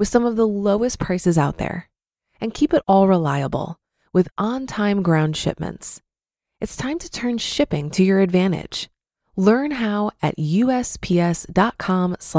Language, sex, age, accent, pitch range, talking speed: English, female, 20-39, American, 170-230 Hz, 140 wpm